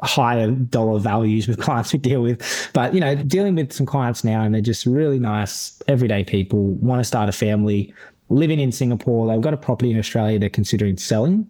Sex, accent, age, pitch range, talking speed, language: male, Australian, 20-39, 105-130 Hz, 210 wpm, English